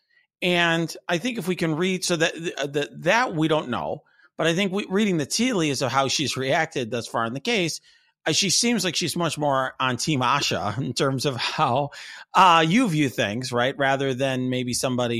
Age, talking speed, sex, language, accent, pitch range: 40-59, 200 wpm, male, English, American, 115-160 Hz